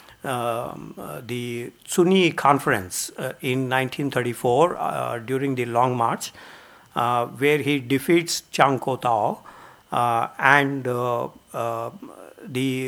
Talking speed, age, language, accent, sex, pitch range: 105 wpm, 60-79, English, Indian, male, 125-155 Hz